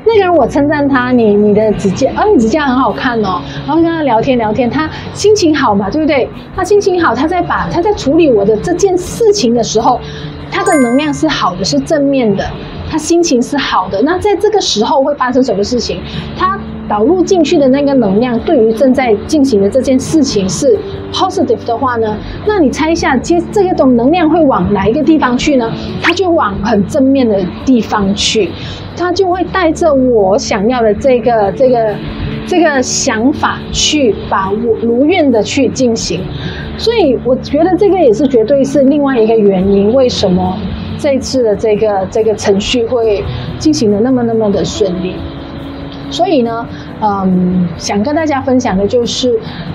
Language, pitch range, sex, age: Chinese, 215-315 Hz, female, 20-39